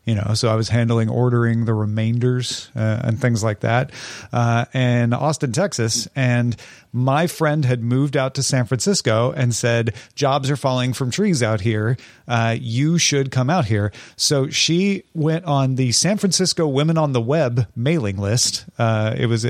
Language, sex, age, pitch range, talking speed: English, male, 40-59, 115-145 Hz, 180 wpm